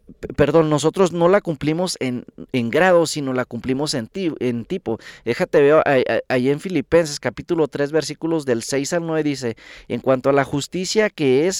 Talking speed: 180 wpm